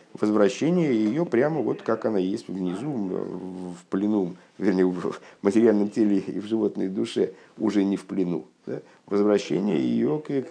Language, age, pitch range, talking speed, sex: Russian, 50-69, 90-125 Hz, 150 wpm, male